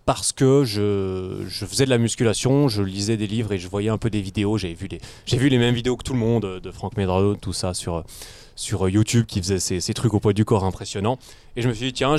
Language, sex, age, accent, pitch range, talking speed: French, male, 20-39, French, 100-125 Hz, 270 wpm